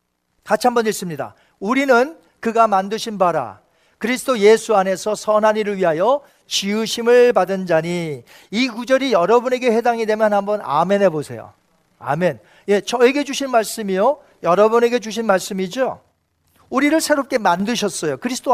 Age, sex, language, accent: 40-59, male, Korean, native